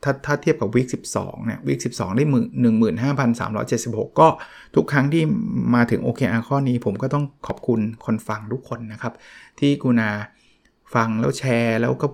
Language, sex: Thai, male